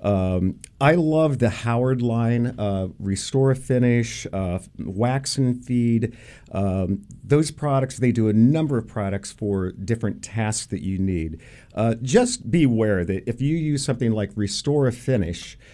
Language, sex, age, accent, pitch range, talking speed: English, male, 50-69, American, 95-125 Hz, 155 wpm